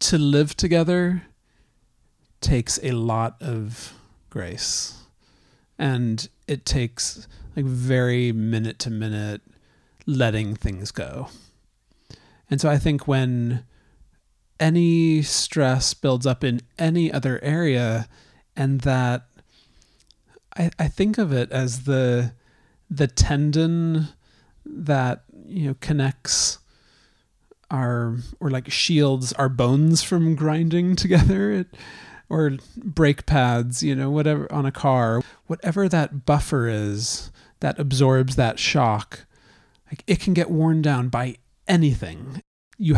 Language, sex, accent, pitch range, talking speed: English, male, American, 120-155 Hz, 115 wpm